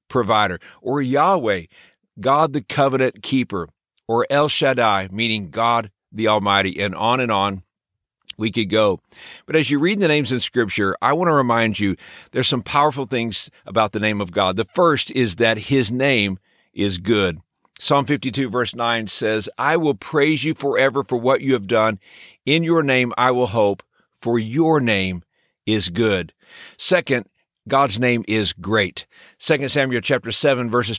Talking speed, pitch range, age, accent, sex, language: 170 wpm, 110-145 Hz, 50-69, American, male, English